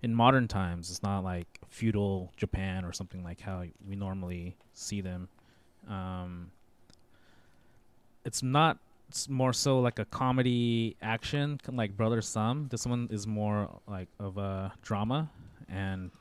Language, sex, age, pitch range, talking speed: English, male, 20-39, 95-115 Hz, 150 wpm